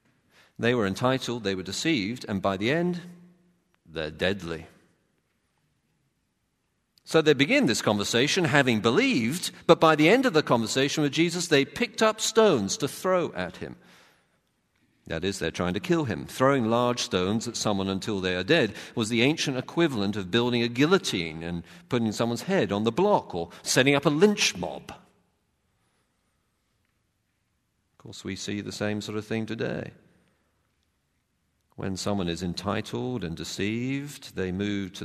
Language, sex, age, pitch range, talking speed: English, male, 50-69, 90-130 Hz, 160 wpm